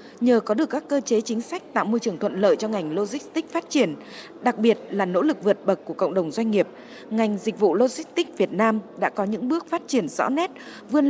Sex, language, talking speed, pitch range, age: female, Vietnamese, 245 wpm, 205-275 Hz, 20-39